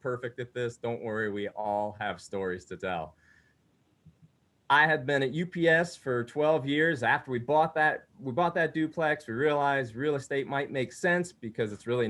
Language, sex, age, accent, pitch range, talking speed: English, male, 30-49, American, 110-150 Hz, 185 wpm